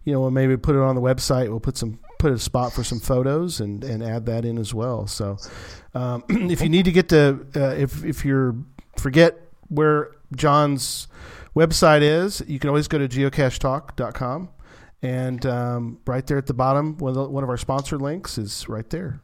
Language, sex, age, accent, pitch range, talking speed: English, male, 40-59, American, 115-145 Hz, 205 wpm